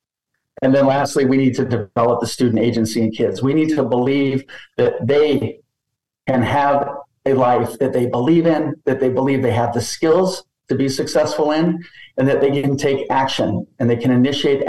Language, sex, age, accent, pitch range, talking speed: English, male, 50-69, American, 125-145 Hz, 190 wpm